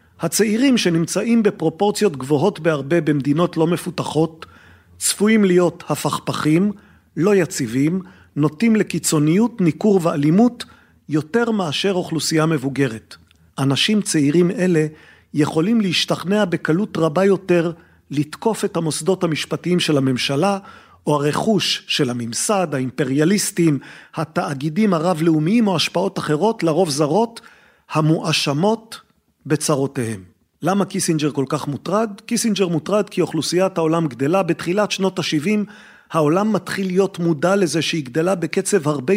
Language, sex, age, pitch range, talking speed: Hebrew, male, 40-59, 150-195 Hz, 110 wpm